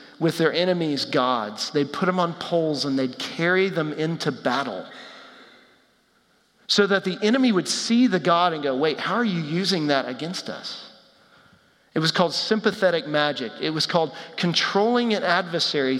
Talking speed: 165 wpm